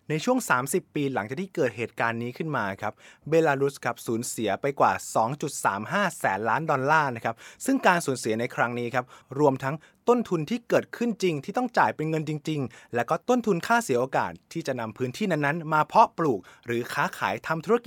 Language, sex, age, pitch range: Thai, male, 20-39, 120-170 Hz